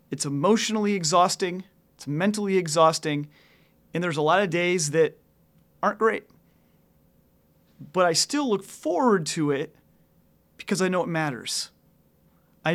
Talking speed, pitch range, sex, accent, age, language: 130 wpm, 145-190 Hz, male, American, 30-49, English